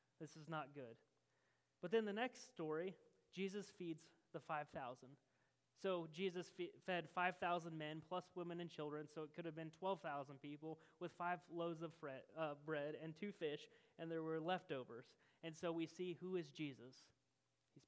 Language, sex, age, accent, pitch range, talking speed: English, male, 30-49, American, 145-175 Hz, 170 wpm